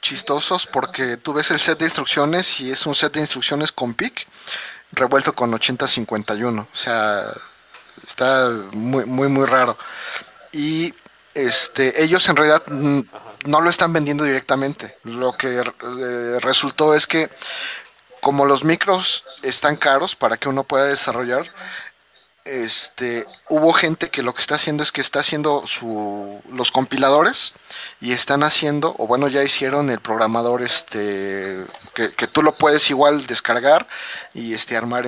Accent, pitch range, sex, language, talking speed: Mexican, 120-150 Hz, male, Spanish, 140 wpm